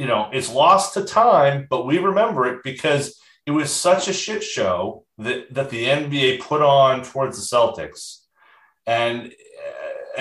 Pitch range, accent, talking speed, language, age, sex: 120-175 Hz, American, 165 wpm, English, 30-49, male